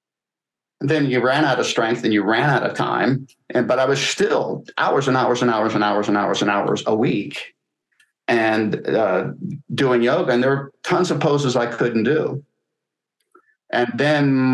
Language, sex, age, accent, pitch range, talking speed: English, male, 50-69, American, 120-135 Hz, 185 wpm